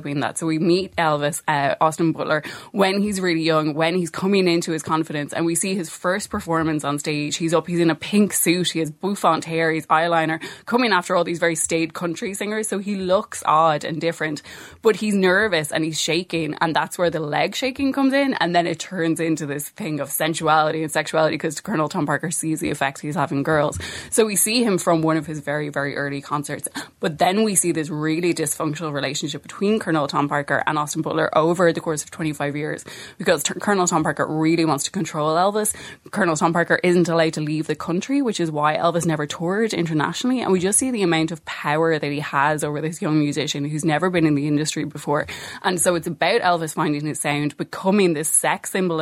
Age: 20-39